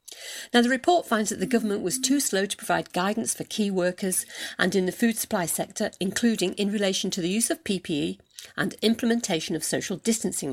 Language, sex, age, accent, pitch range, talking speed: English, female, 50-69, British, 175-230 Hz, 200 wpm